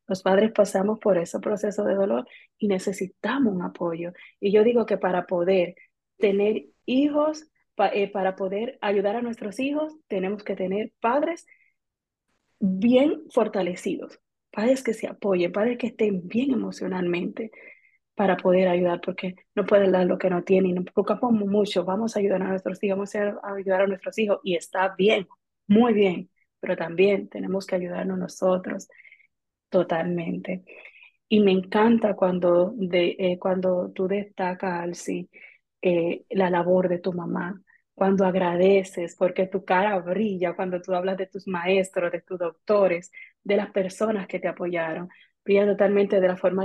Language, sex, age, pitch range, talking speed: Spanish, female, 30-49, 180-210 Hz, 155 wpm